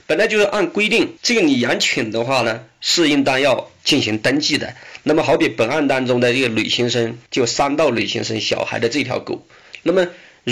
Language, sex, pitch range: Chinese, male, 120-170 Hz